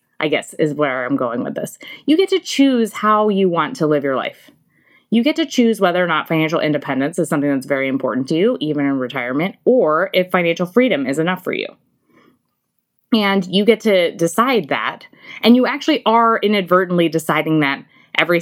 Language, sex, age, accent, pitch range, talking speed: English, female, 20-39, American, 150-230 Hz, 195 wpm